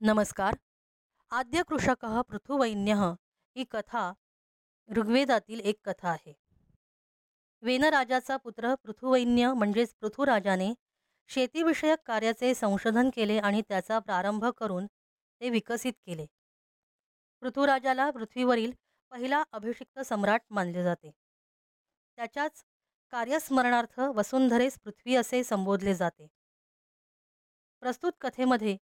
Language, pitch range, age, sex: Marathi, 210-265 Hz, 20-39, female